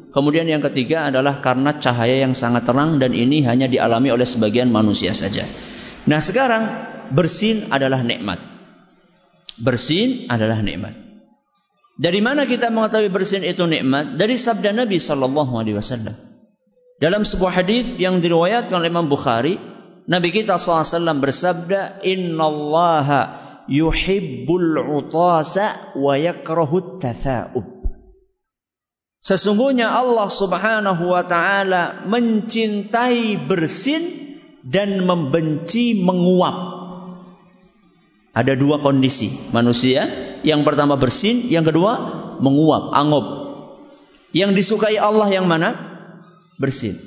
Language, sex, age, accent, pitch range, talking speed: English, male, 50-69, Indonesian, 145-215 Hz, 100 wpm